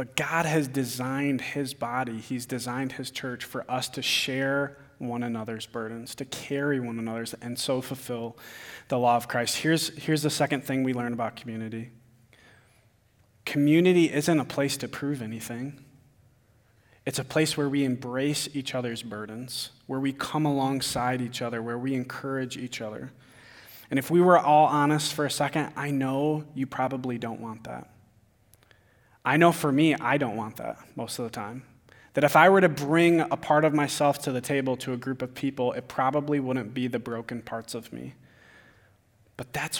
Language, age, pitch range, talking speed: English, 20-39, 115-145 Hz, 180 wpm